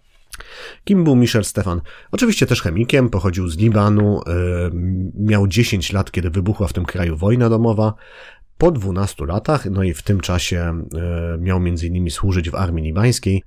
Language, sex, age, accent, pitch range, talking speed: Polish, male, 30-49, native, 85-110 Hz, 150 wpm